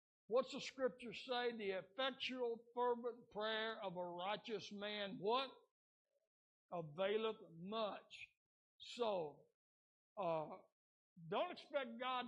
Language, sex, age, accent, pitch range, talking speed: English, male, 60-79, American, 180-220 Hz, 100 wpm